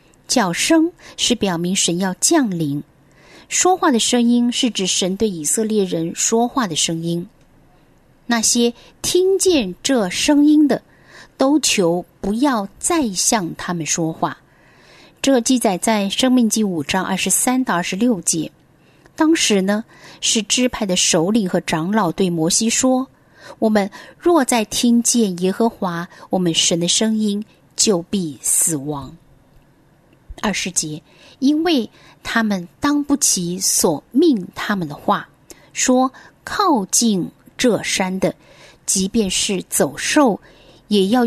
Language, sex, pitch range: Chinese, female, 185-260 Hz